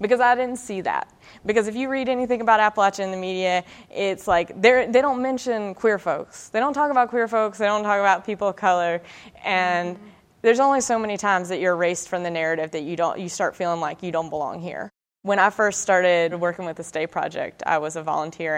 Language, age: English, 20-39